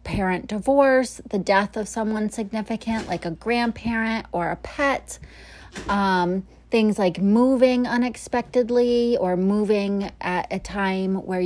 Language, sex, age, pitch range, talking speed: English, female, 30-49, 180-240 Hz, 125 wpm